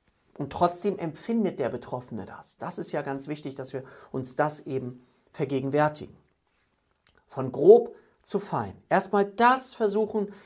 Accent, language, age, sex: German, German, 40-59, male